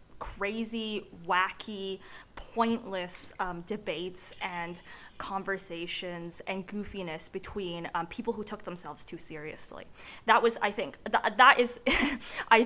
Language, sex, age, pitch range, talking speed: English, female, 20-39, 180-240 Hz, 115 wpm